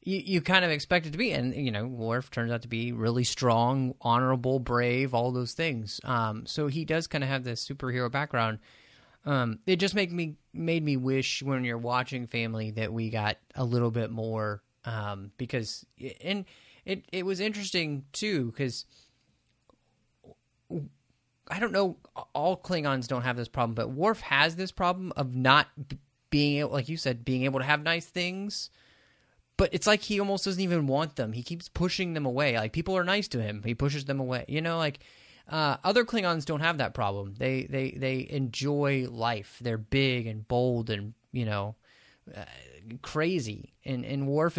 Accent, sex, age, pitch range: American, male, 30-49, 115-150 Hz